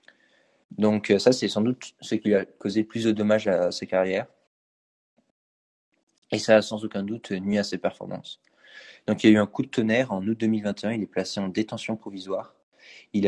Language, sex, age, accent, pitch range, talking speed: French, male, 20-39, French, 100-110 Hz, 205 wpm